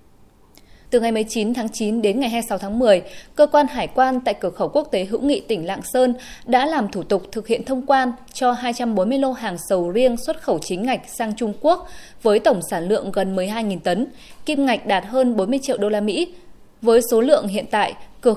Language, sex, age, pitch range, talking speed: Vietnamese, female, 20-39, 205-265 Hz, 220 wpm